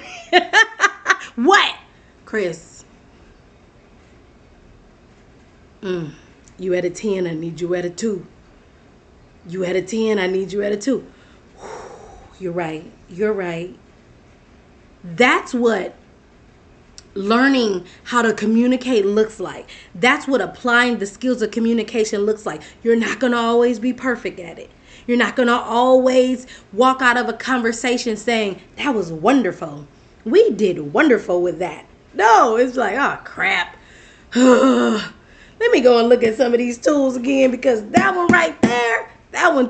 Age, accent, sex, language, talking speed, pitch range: 30-49, American, female, English, 140 wpm, 185-250 Hz